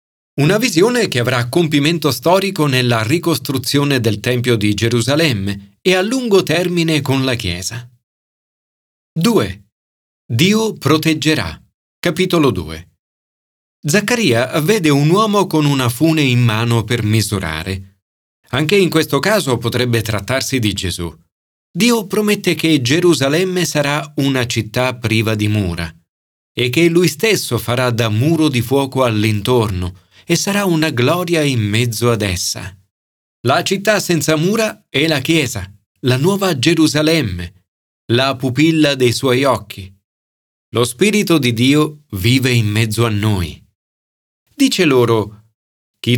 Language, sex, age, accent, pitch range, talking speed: Italian, male, 40-59, native, 105-160 Hz, 125 wpm